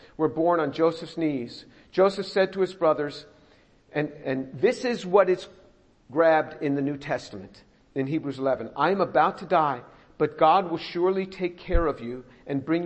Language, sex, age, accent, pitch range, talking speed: English, male, 50-69, American, 145-175 Hz, 180 wpm